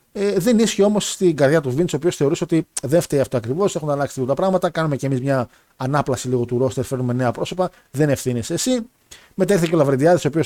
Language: Greek